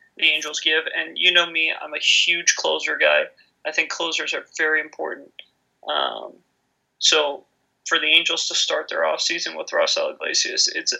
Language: English